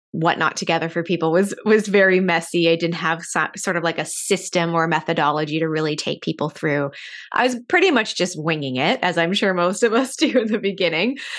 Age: 20-39